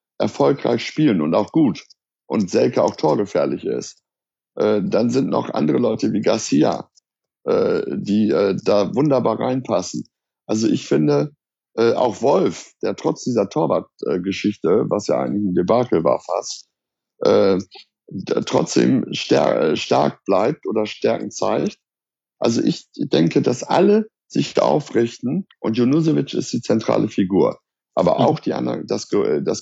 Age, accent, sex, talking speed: 60-79, German, male, 130 wpm